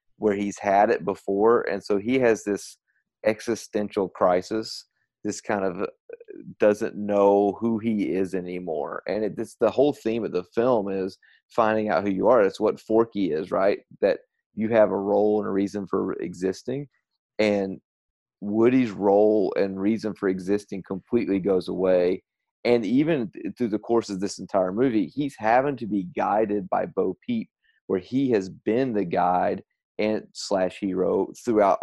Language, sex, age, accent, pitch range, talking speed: English, male, 30-49, American, 95-115 Hz, 165 wpm